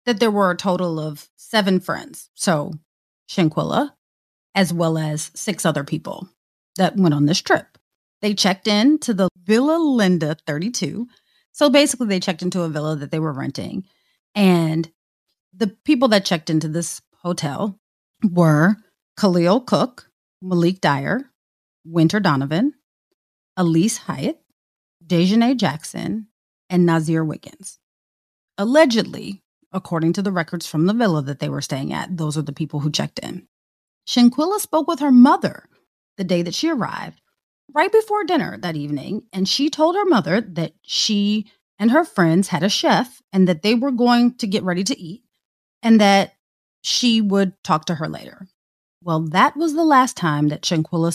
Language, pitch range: English, 160-225 Hz